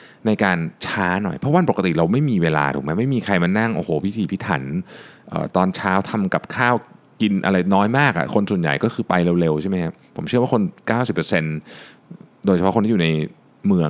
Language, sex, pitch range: Thai, male, 80-110 Hz